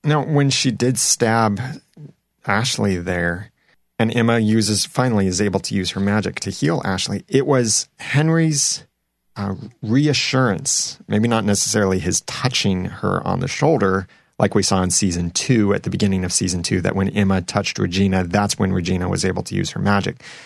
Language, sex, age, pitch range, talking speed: English, male, 30-49, 95-120 Hz, 175 wpm